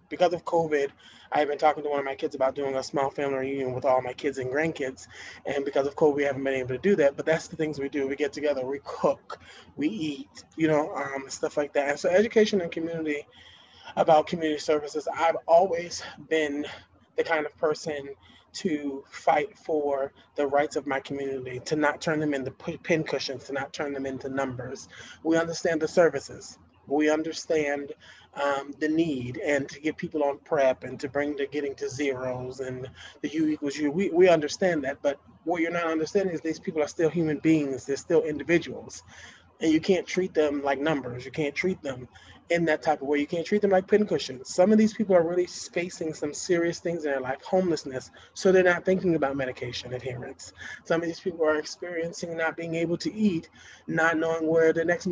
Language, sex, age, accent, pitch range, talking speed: English, male, 20-39, American, 140-170 Hz, 210 wpm